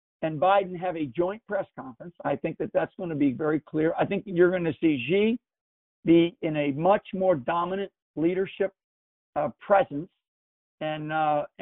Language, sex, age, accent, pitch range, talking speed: English, male, 50-69, American, 150-175 Hz, 175 wpm